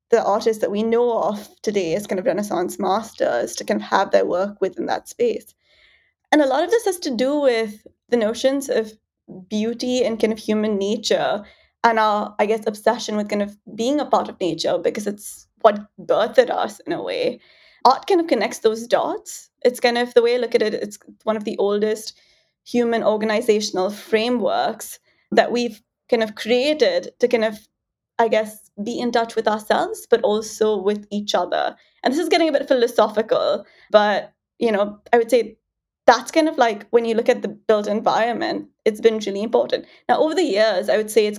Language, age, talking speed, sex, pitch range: English, 20-39, 200 wpm, female, 210-245 Hz